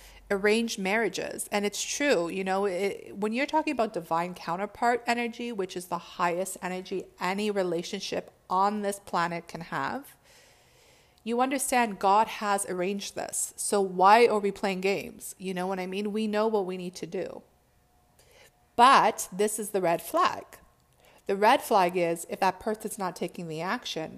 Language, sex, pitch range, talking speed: English, female, 180-215 Hz, 165 wpm